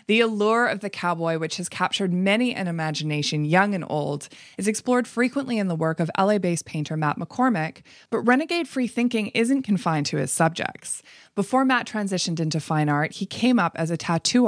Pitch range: 160-215 Hz